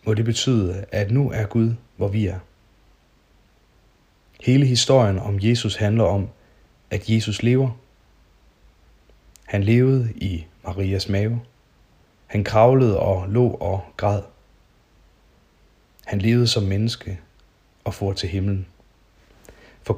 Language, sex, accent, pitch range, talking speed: Danish, male, native, 95-115 Hz, 115 wpm